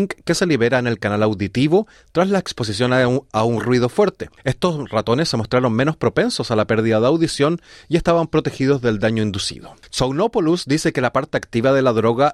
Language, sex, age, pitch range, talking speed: Spanish, male, 30-49, 110-160 Hz, 200 wpm